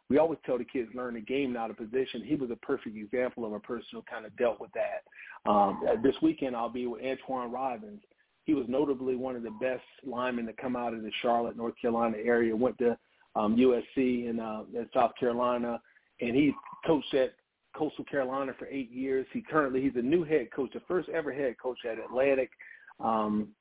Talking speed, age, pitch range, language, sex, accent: 210 wpm, 40-59, 120-145 Hz, English, male, American